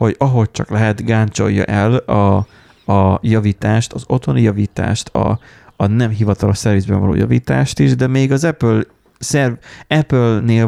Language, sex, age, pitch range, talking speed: Hungarian, male, 30-49, 100-125 Hz, 145 wpm